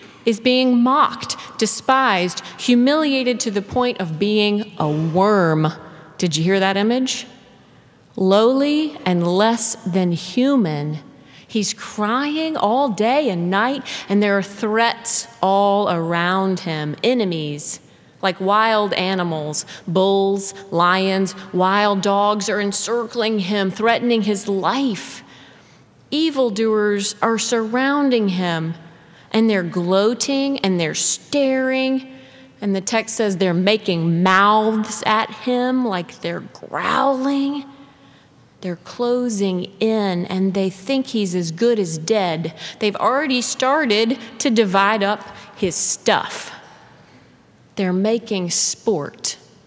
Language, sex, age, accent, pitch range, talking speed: English, female, 30-49, American, 180-235 Hz, 110 wpm